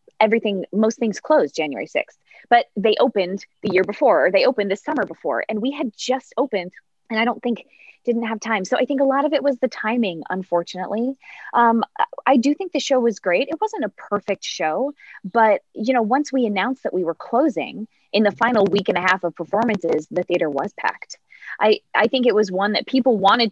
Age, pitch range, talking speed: 20-39, 170-240 Hz, 215 wpm